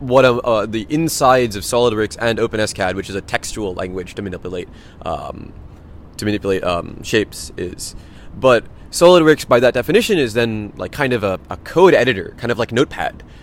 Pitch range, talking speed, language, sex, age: 95-125 Hz, 185 wpm, Slovak, male, 20-39